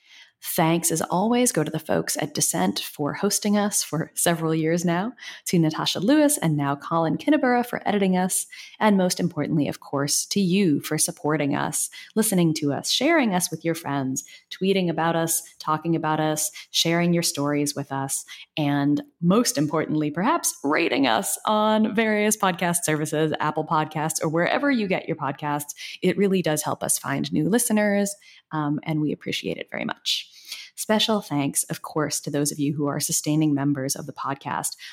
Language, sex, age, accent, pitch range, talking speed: English, female, 20-39, American, 150-195 Hz, 175 wpm